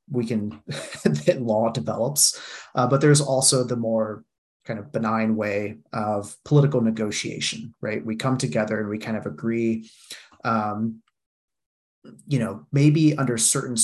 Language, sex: English, male